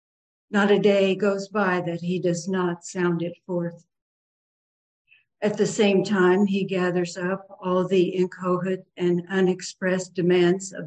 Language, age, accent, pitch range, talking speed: English, 60-79, American, 175-200 Hz, 145 wpm